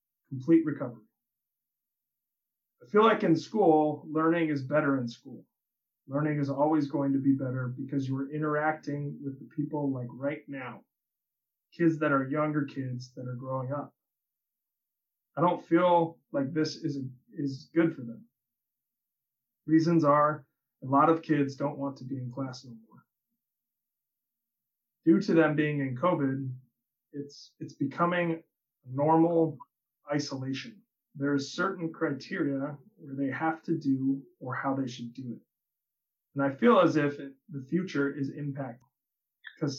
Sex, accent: male, American